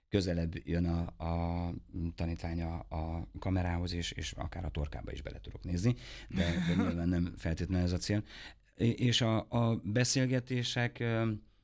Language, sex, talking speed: Hungarian, male, 145 wpm